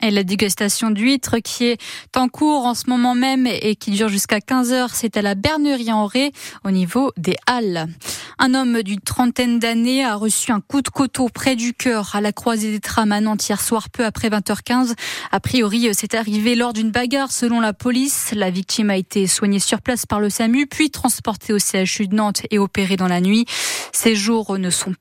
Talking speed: 215 wpm